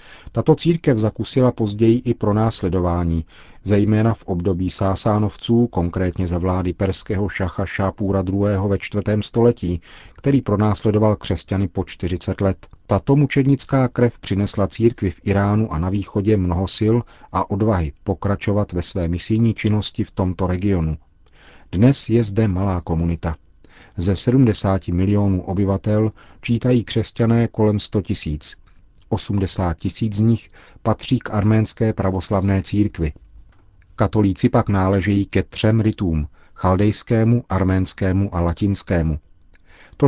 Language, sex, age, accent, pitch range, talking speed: Czech, male, 40-59, native, 90-110 Hz, 125 wpm